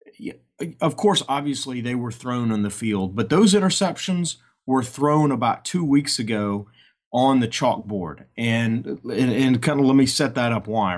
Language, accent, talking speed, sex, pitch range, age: English, American, 175 wpm, male, 115-140 Hz, 40-59